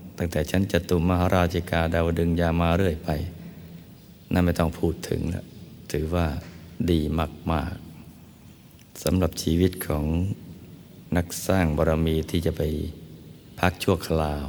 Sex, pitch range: male, 80-90 Hz